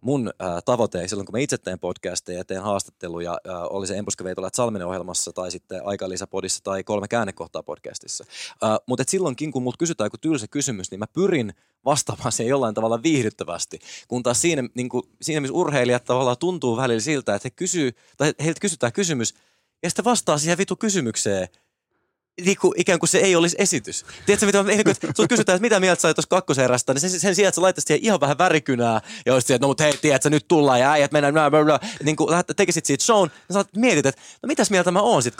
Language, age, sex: Finnish, 20-39, male